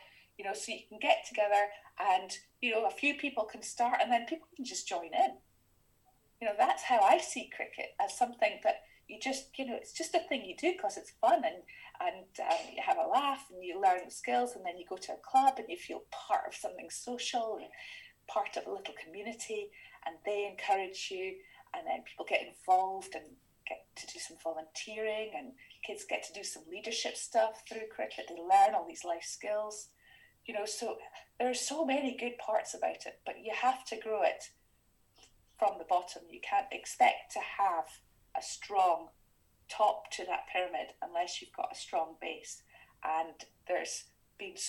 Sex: female